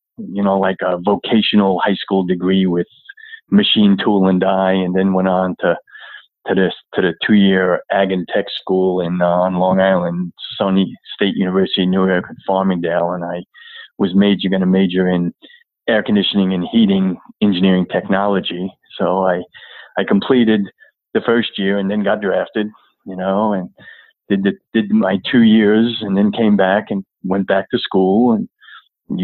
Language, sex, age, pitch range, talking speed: English, male, 30-49, 95-110 Hz, 175 wpm